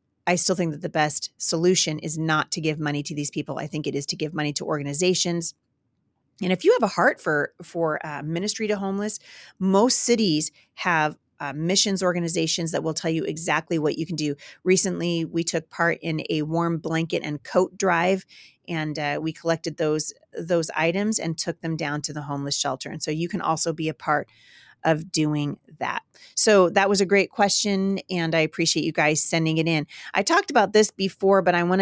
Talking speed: 205 wpm